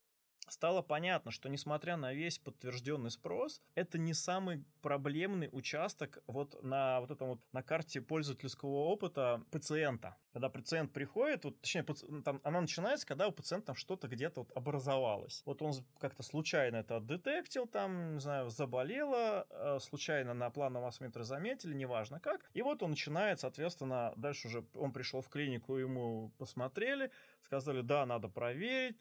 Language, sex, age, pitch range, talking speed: Russian, male, 20-39, 130-170 Hz, 145 wpm